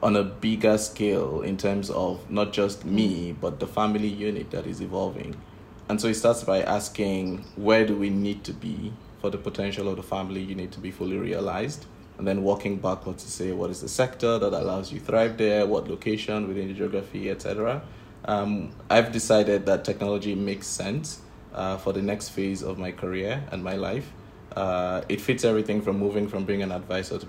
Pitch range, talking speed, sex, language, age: 95-105 Hz, 200 wpm, male, English, 20-39